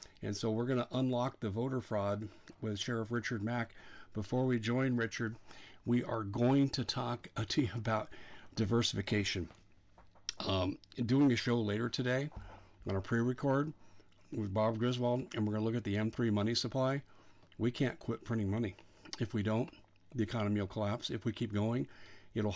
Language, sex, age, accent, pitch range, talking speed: English, male, 50-69, American, 105-120 Hz, 170 wpm